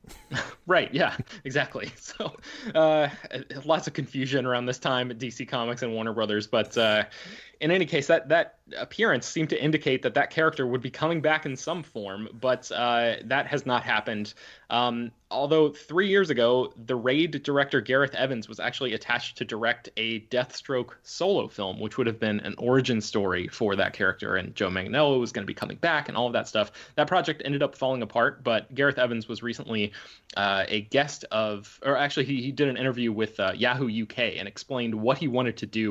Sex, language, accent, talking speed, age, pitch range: male, English, American, 200 wpm, 20-39, 110-135 Hz